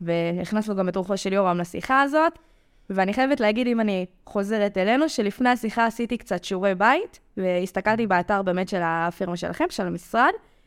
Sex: female